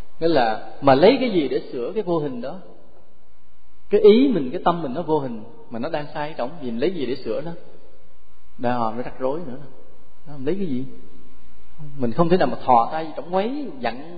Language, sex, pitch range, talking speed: English, male, 125-190 Hz, 215 wpm